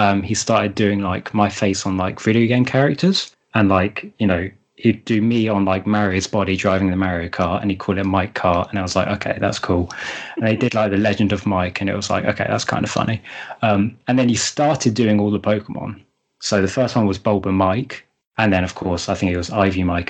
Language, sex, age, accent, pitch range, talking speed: English, male, 20-39, British, 95-125 Hz, 250 wpm